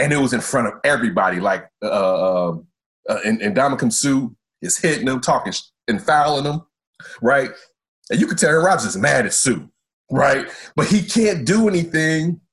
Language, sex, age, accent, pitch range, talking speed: English, male, 30-49, American, 130-200 Hz, 175 wpm